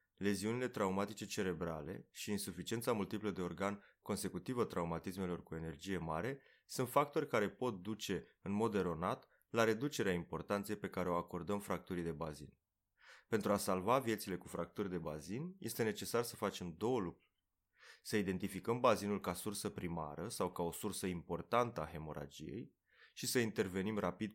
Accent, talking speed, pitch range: native, 155 wpm, 85-105 Hz